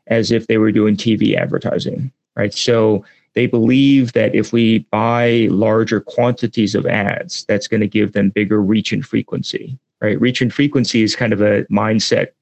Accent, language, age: American, English, 30-49